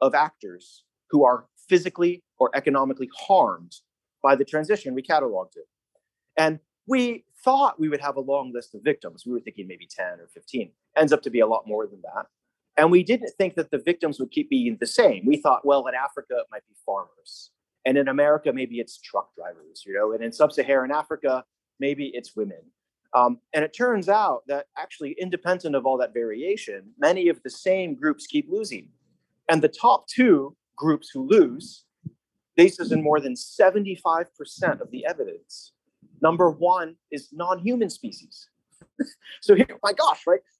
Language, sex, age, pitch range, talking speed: English, male, 30-49, 135-215 Hz, 180 wpm